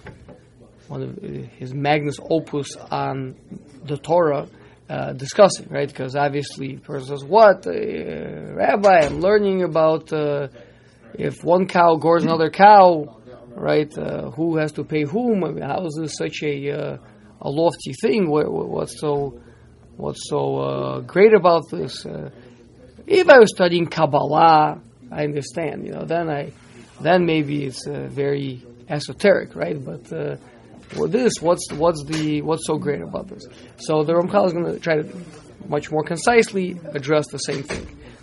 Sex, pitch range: male, 140-175 Hz